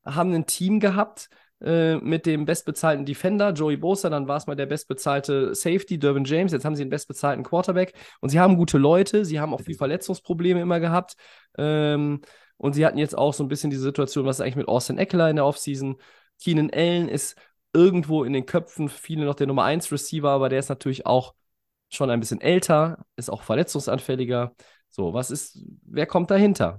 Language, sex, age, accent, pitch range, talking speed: German, male, 20-39, German, 115-160 Hz, 195 wpm